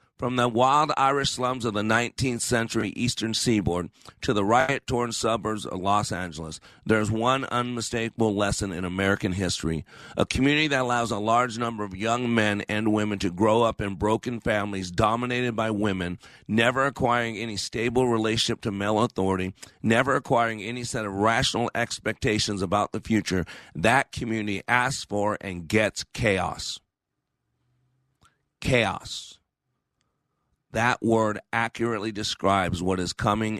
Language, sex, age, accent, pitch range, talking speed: English, male, 40-59, American, 100-120 Hz, 140 wpm